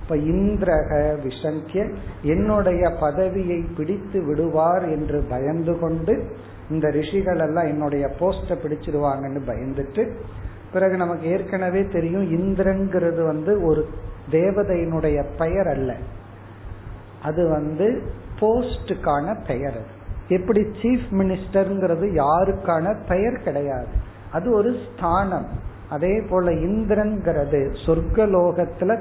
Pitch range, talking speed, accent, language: 140-190 Hz, 75 wpm, native, Tamil